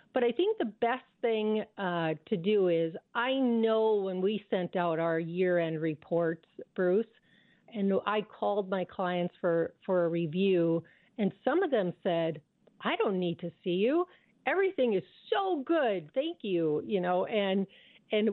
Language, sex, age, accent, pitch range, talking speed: English, female, 50-69, American, 170-225 Hz, 165 wpm